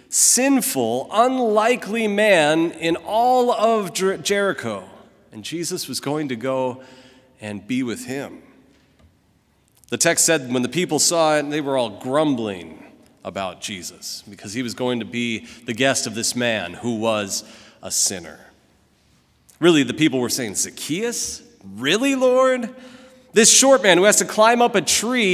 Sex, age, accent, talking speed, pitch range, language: male, 40-59, American, 150 wpm, 140-230 Hz, English